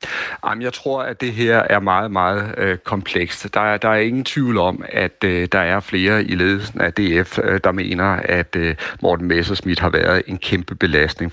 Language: Danish